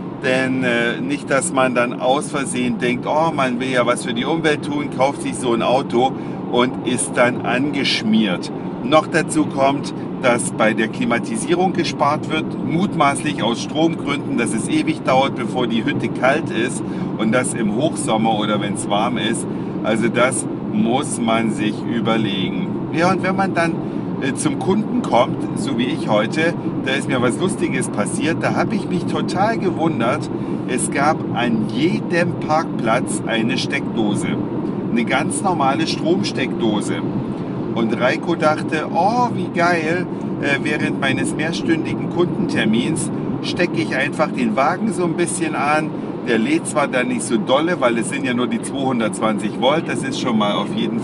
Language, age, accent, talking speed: German, 50-69, German, 160 wpm